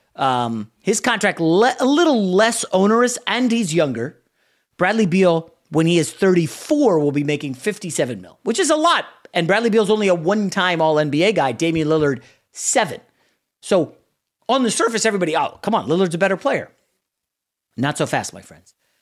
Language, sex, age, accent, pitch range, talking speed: English, male, 30-49, American, 130-185 Hz, 170 wpm